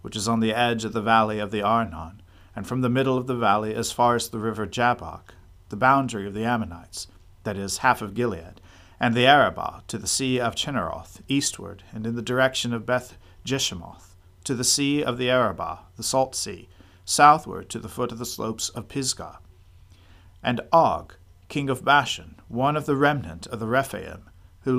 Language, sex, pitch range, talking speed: English, male, 90-130 Hz, 195 wpm